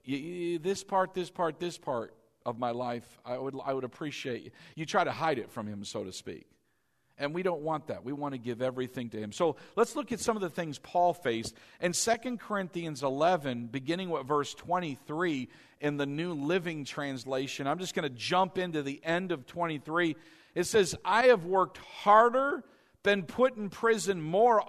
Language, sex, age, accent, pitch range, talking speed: English, male, 50-69, American, 150-220 Hz, 200 wpm